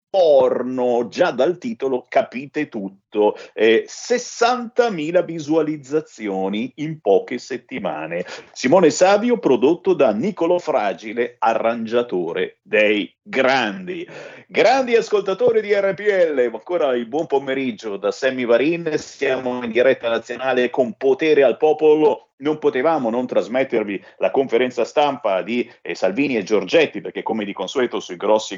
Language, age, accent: Italian, 50-69, native